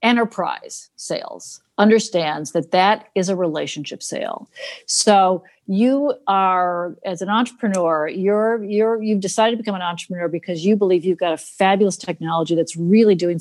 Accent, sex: American, female